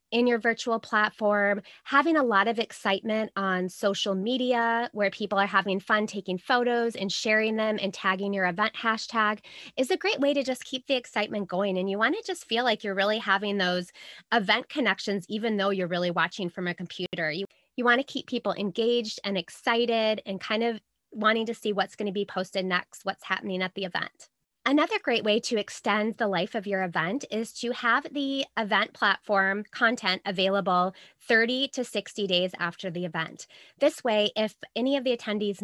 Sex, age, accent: female, 20-39, American